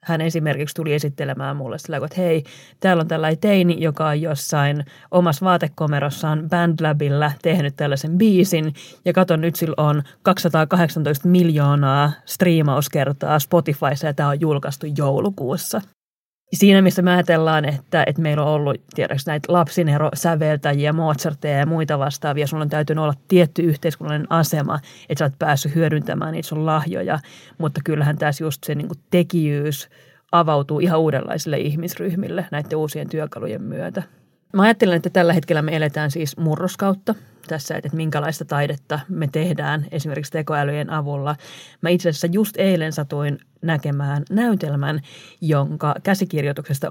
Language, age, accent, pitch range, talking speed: Finnish, 30-49, native, 150-175 Hz, 140 wpm